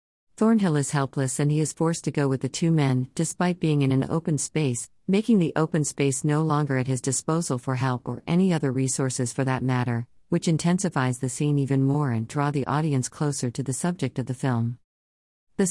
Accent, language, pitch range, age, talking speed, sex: American, English, 130-155 Hz, 50-69, 210 wpm, female